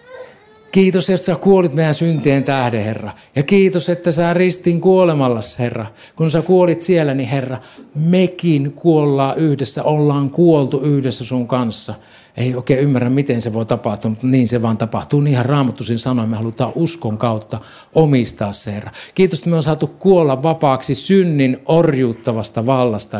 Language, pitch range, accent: Finnish, 115-155 Hz, native